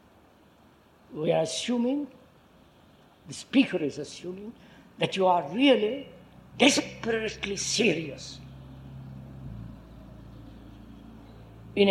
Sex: female